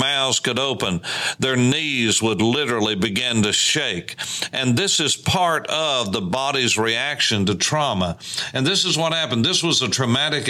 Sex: male